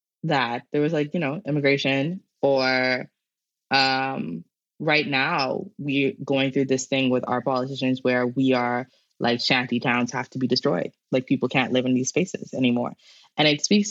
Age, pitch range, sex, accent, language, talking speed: 20-39, 125-145 Hz, female, American, English, 175 wpm